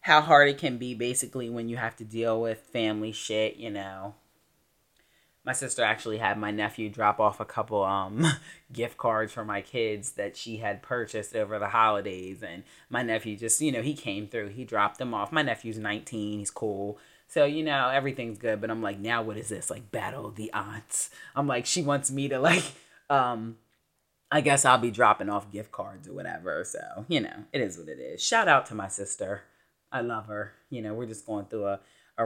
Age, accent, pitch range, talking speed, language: 30-49, American, 110-140 Hz, 215 wpm, English